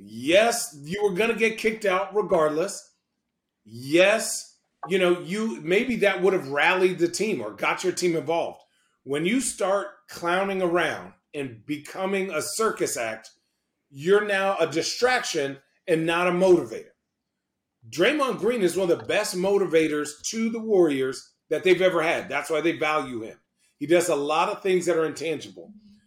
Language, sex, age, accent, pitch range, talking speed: English, male, 40-59, American, 165-220 Hz, 165 wpm